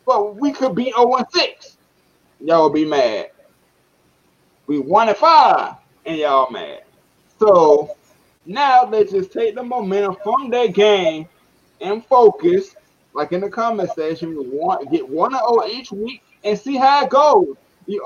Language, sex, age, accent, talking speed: English, male, 20-39, American, 140 wpm